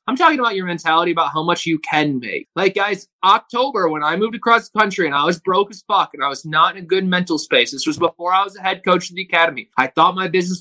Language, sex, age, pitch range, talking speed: English, male, 20-39, 165-205 Hz, 285 wpm